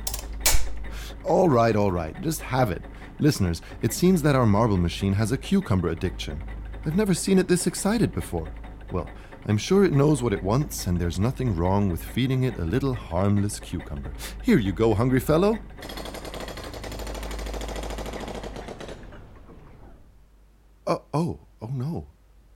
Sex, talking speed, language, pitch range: male, 140 wpm, English, 90-150 Hz